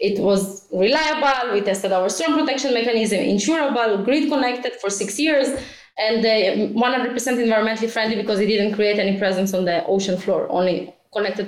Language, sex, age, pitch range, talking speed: English, female, 20-39, 220-290 Hz, 160 wpm